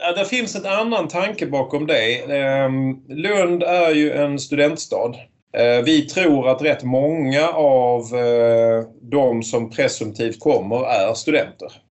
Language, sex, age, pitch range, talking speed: Swedish, male, 30-49, 115-145 Hz, 120 wpm